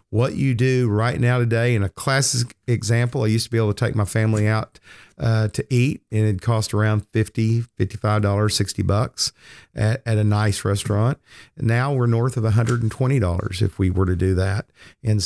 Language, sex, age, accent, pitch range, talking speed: English, male, 40-59, American, 100-115 Hz, 205 wpm